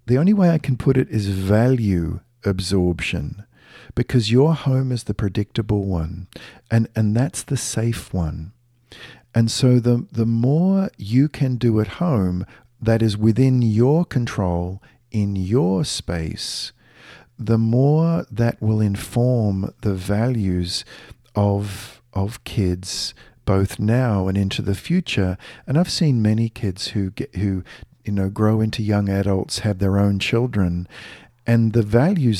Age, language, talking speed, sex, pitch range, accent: 50-69, English, 145 wpm, male, 100-120 Hz, Australian